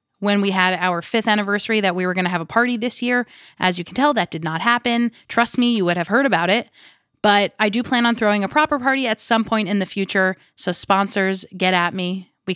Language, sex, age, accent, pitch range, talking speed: English, female, 20-39, American, 180-235 Hz, 255 wpm